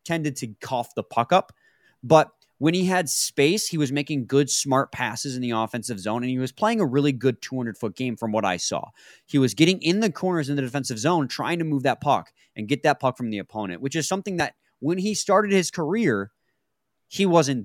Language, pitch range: English, 120-155 Hz